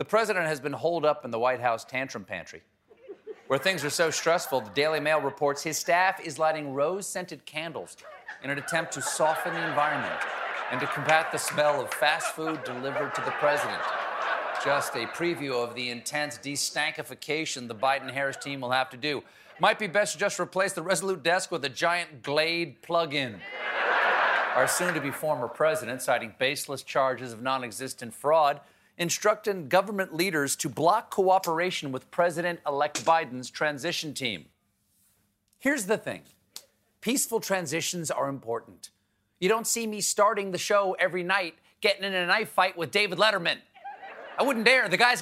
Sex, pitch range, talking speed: male, 130-185 Hz, 175 wpm